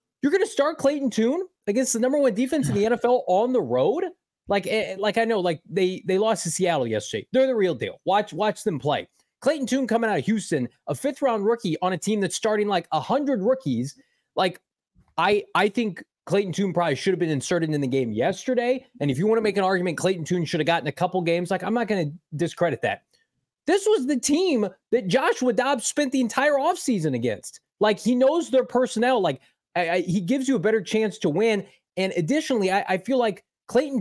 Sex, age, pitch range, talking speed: male, 20-39, 170-245 Hz, 225 wpm